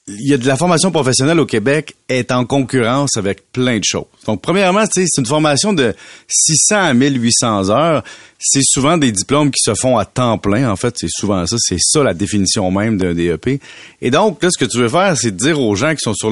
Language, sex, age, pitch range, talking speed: French, male, 30-49, 105-140 Hz, 230 wpm